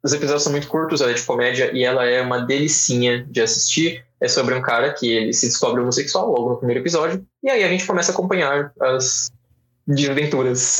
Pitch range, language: 120-165 Hz, Portuguese